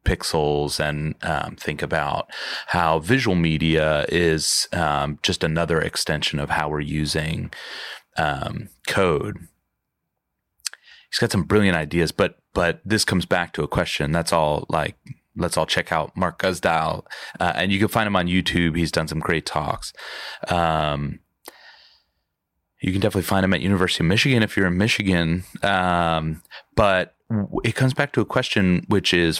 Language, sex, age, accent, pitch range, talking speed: English, male, 30-49, American, 80-95 Hz, 160 wpm